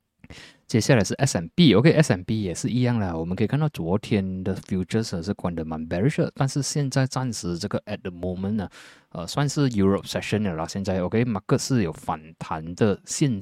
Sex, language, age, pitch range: male, Chinese, 20-39, 90-120 Hz